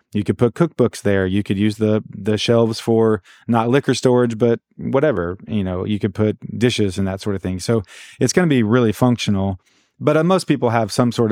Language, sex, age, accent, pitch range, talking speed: English, male, 30-49, American, 105-125 Hz, 225 wpm